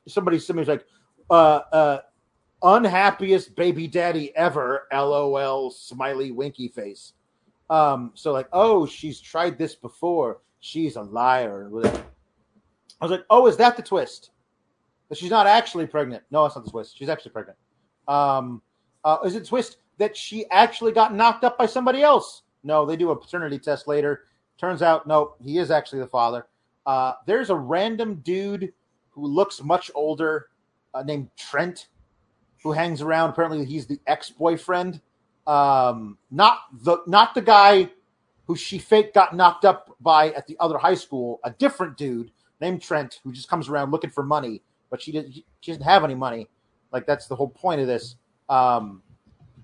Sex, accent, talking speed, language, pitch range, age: male, American, 165 wpm, English, 130-180 Hz, 30-49